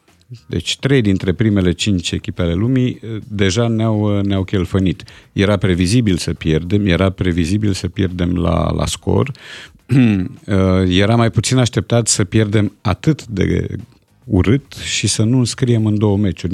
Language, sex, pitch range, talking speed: Romanian, male, 95-120 Hz, 140 wpm